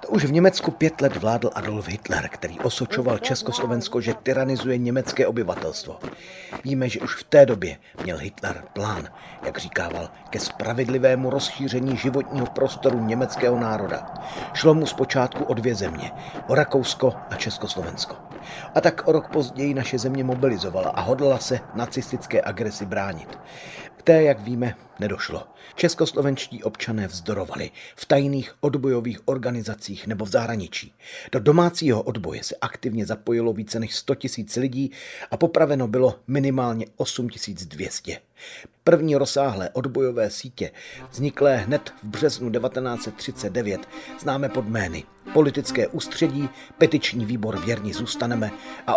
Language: Czech